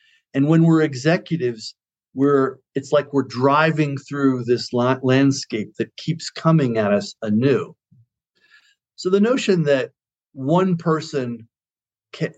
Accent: American